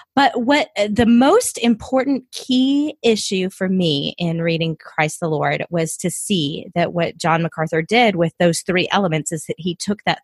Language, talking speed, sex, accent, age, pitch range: English, 180 wpm, female, American, 30-49, 165-215 Hz